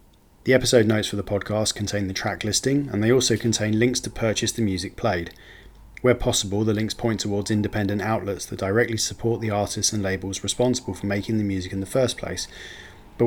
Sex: male